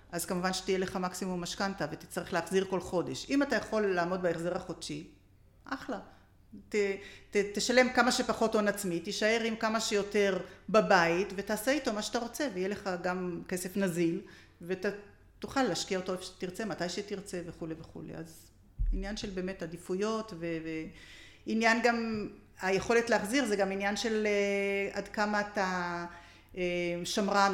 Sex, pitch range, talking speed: female, 180-220 Hz, 145 wpm